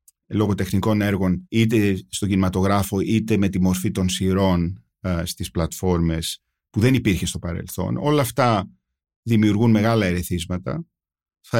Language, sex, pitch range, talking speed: Greek, male, 90-115 Hz, 125 wpm